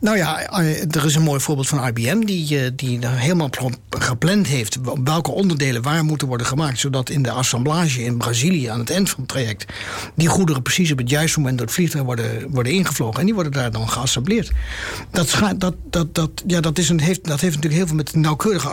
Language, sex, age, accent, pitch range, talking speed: Dutch, male, 60-79, Dutch, 120-155 Hz, 215 wpm